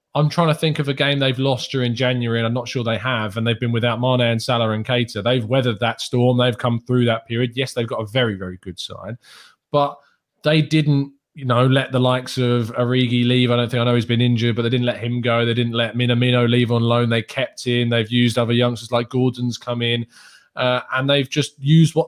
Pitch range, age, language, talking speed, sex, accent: 115-135 Hz, 20-39, English, 250 wpm, male, British